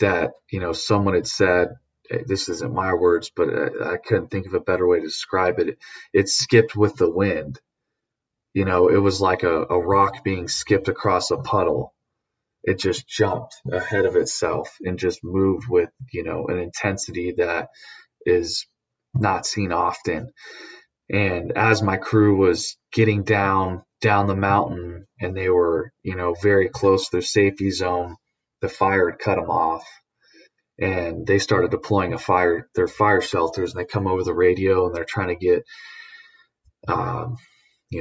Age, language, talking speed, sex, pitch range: 20-39, English, 170 wpm, male, 95-115 Hz